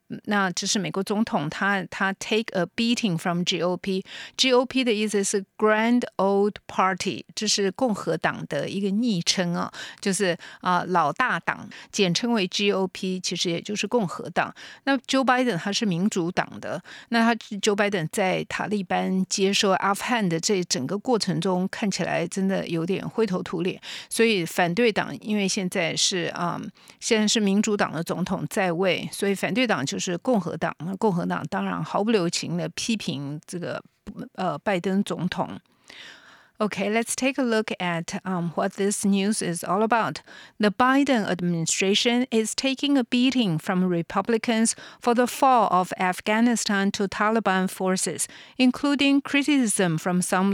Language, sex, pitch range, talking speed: English, female, 180-225 Hz, 55 wpm